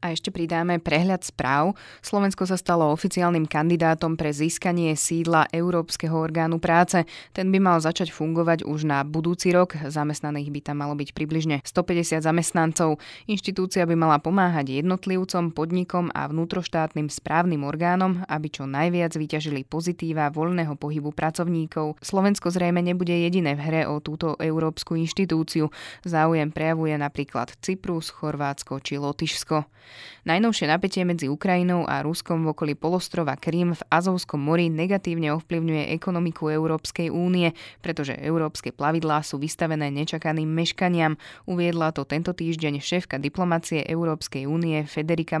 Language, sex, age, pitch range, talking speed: Slovak, female, 20-39, 150-175 Hz, 135 wpm